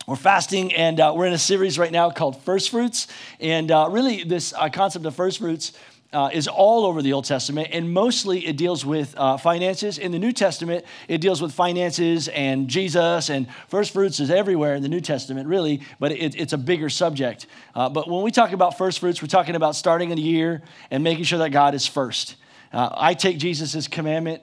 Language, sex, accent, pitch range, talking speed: English, male, American, 140-175 Hz, 215 wpm